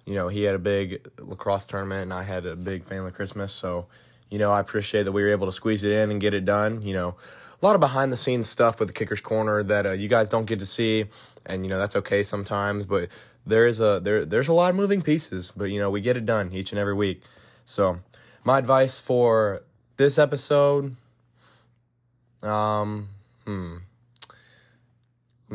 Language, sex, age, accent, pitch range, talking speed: English, male, 20-39, American, 95-120 Hz, 210 wpm